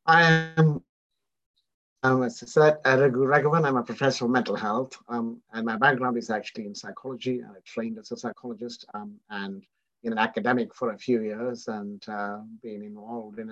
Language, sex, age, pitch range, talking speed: English, male, 50-69, 110-130 Hz, 170 wpm